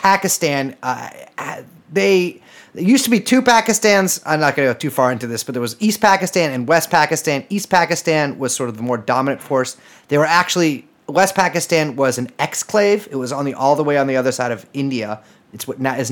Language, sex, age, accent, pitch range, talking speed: English, male, 30-49, American, 130-170 Hz, 210 wpm